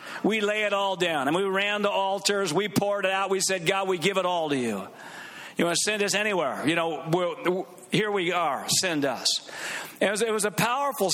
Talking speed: 220 wpm